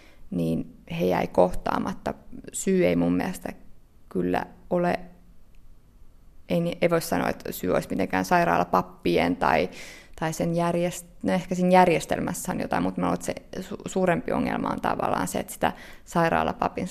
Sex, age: female, 20-39